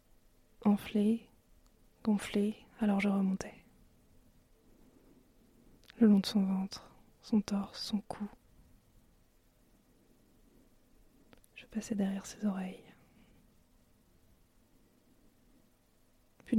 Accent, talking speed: French, 70 wpm